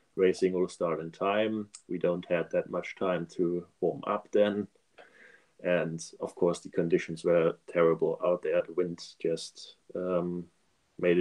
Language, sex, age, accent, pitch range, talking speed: English, male, 20-39, German, 90-100 Hz, 155 wpm